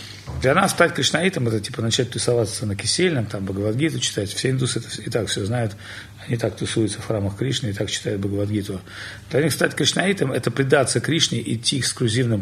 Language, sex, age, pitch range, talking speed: Russian, male, 40-59, 100-115 Hz, 185 wpm